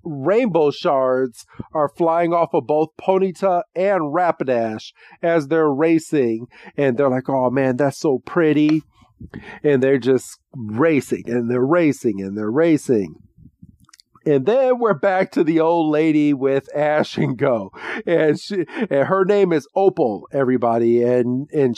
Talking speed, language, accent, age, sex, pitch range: 145 wpm, English, American, 40-59, male, 130-175 Hz